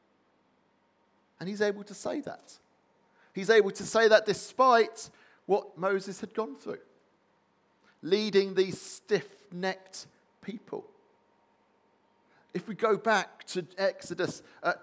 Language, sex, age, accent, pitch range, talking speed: English, male, 40-59, British, 180-215 Hz, 115 wpm